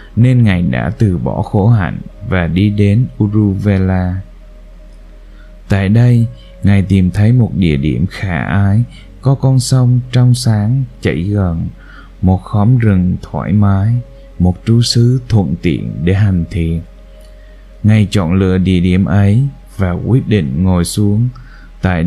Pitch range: 95-120 Hz